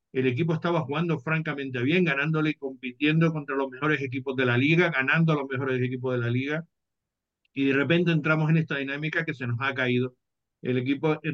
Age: 50-69